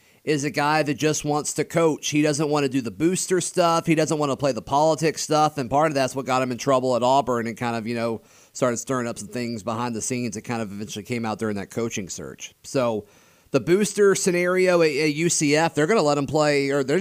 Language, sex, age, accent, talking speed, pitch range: English, male, 30-49, American, 255 wpm, 135-160 Hz